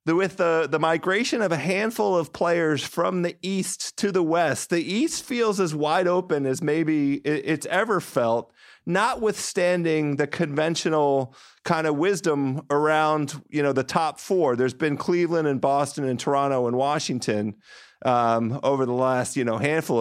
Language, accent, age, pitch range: English, American, 40-59, 130-175 Hz